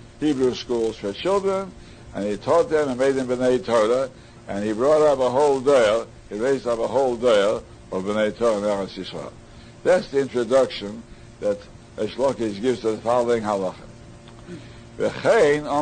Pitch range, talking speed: 110-145 Hz, 160 wpm